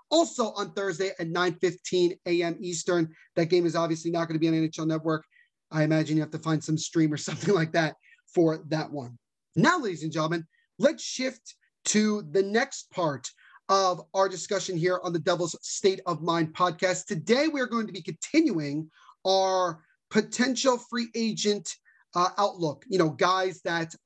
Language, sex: English, male